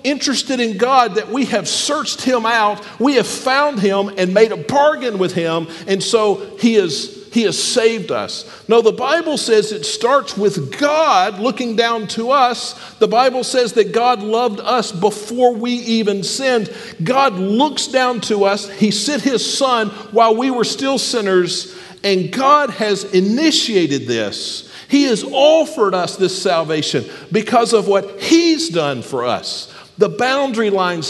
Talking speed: 160 wpm